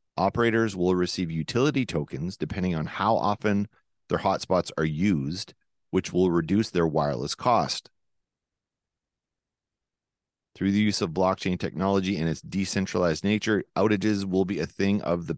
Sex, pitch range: male, 80-100 Hz